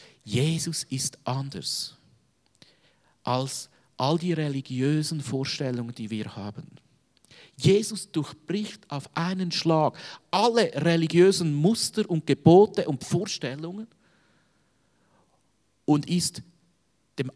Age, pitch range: 50-69, 120-165 Hz